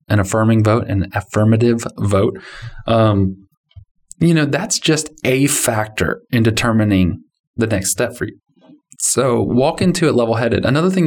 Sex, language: male, English